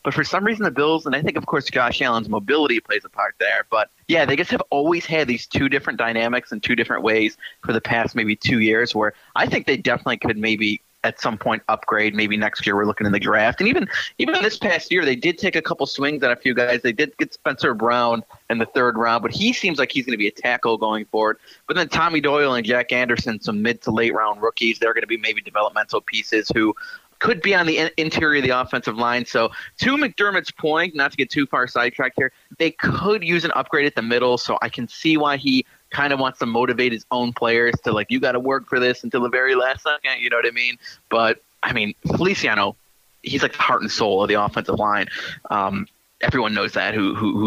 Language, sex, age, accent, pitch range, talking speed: English, male, 30-49, American, 115-155 Hz, 250 wpm